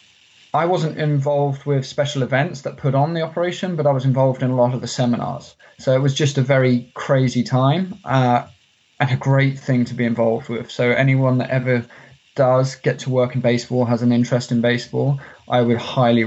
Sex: male